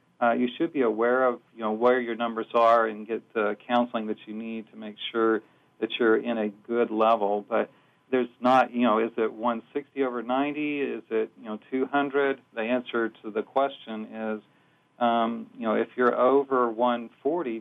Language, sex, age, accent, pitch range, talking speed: English, male, 40-59, American, 110-130 Hz, 190 wpm